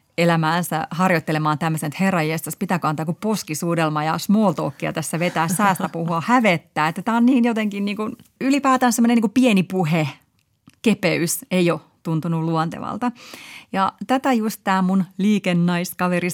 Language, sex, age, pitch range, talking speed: Finnish, female, 30-49, 155-205 Hz, 145 wpm